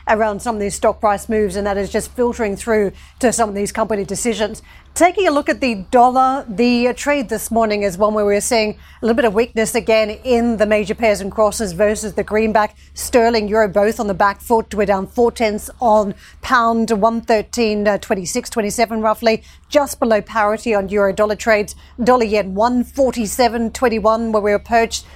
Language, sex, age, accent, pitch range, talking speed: English, female, 40-59, Australian, 210-240 Hz, 190 wpm